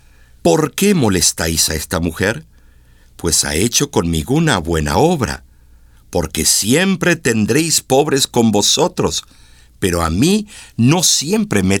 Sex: male